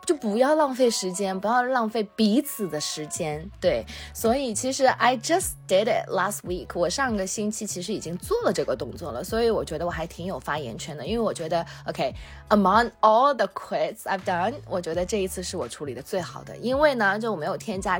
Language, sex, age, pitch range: Chinese, female, 20-39, 170-230 Hz